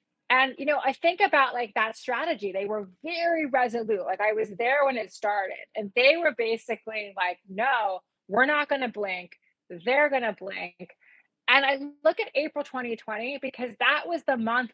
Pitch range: 215-290 Hz